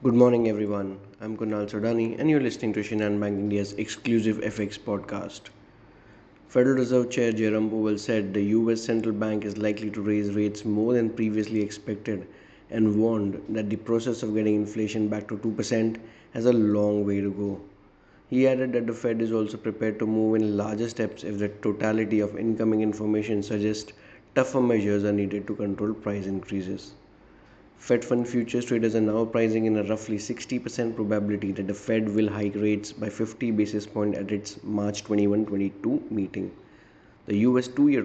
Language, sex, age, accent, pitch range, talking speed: English, male, 20-39, Indian, 100-110 Hz, 175 wpm